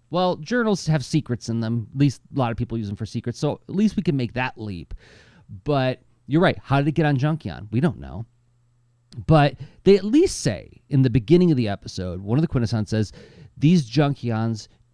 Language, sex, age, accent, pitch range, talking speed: English, male, 30-49, American, 110-135 Hz, 215 wpm